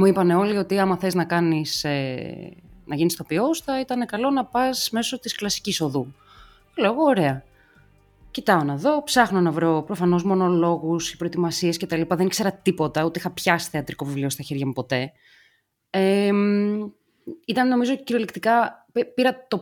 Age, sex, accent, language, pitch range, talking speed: 20-39, female, native, Greek, 160-235 Hz, 150 wpm